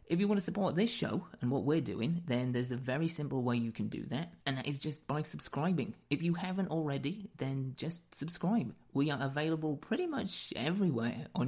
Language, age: English, 30-49